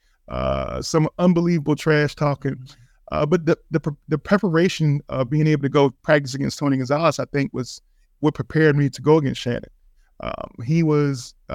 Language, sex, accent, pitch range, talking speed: English, male, American, 135-155 Hz, 170 wpm